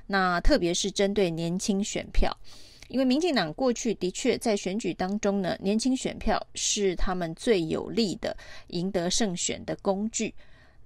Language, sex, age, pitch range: Chinese, female, 30-49, 180-225 Hz